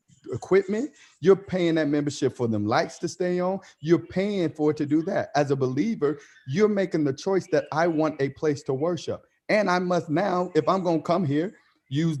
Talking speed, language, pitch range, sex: 210 wpm, English, 140-185 Hz, male